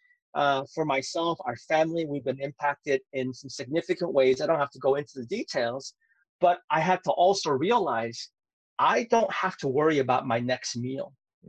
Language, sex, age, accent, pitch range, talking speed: English, male, 40-59, American, 130-170 Hz, 185 wpm